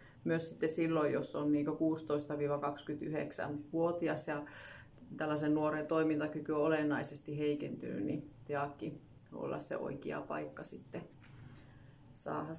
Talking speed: 105 wpm